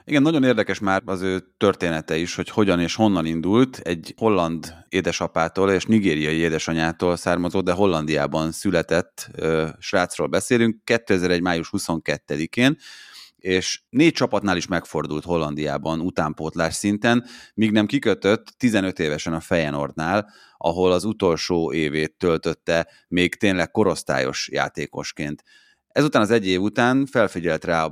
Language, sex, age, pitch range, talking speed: Hungarian, male, 30-49, 80-100 Hz, 130 wpm